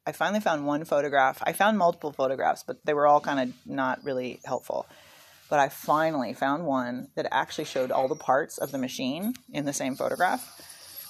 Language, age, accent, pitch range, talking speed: English, 30-49, American, 135-215 Hz, 195 wpm